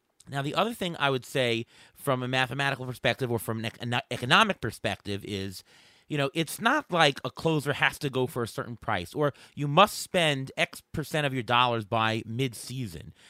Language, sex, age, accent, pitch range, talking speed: English, male, 30-49, American, 120-175 Hz, 190 wpm